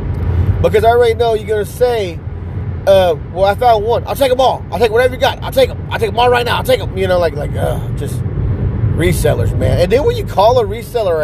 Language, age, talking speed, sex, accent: English, 30-49, 260 wpm, male, American